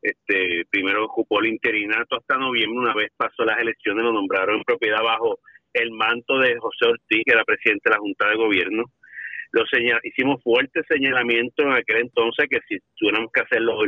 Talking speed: 190 wpm